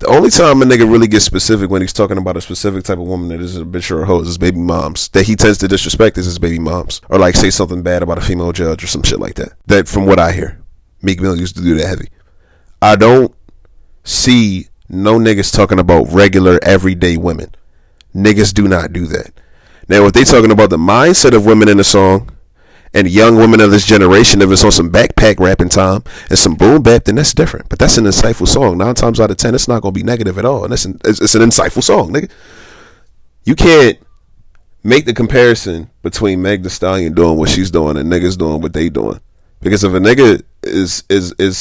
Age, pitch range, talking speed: 30-49, 85-105 Hz, 235 wpm